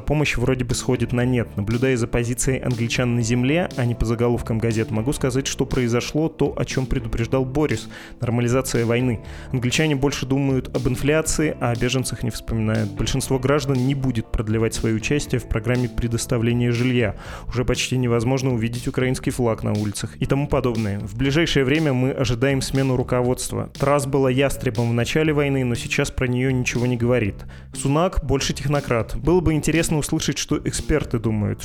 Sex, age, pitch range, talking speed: male, 20-39, 115-135 Hz, 170 wpm